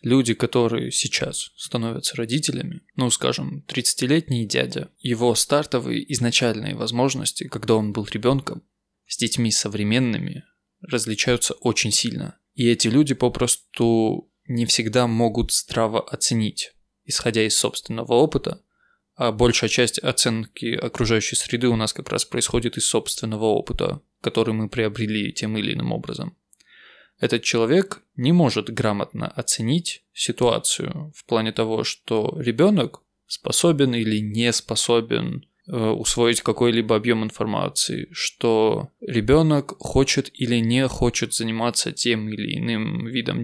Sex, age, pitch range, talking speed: male, 20-39, 115-130 Hz, 120 wpm